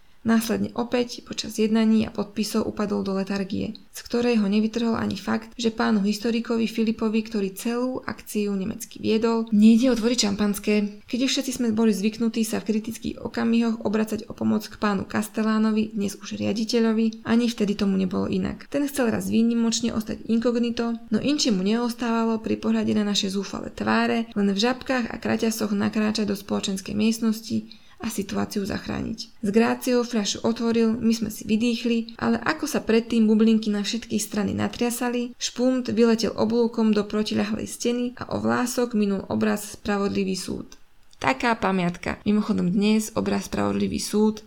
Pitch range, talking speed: 205-230 Hz, 155 wpm